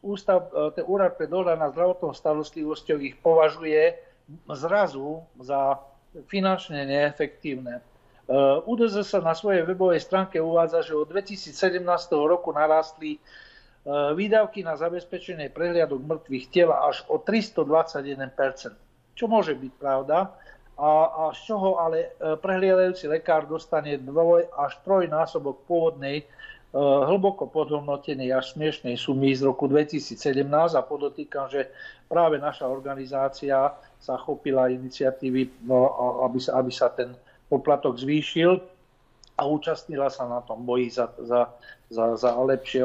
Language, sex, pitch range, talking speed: Slovak, male, 135-175 Hz, 120 wpm